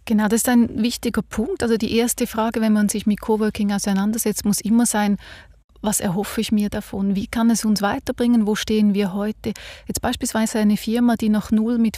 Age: 30-49